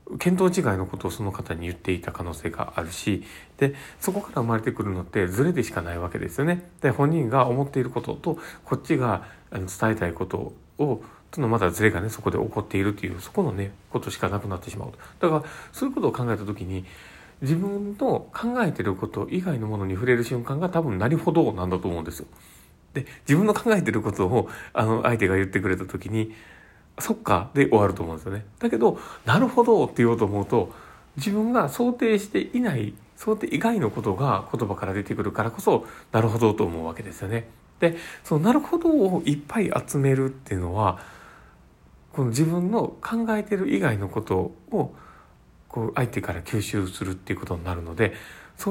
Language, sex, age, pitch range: Japanese, male, 40-59, 95-160 Hz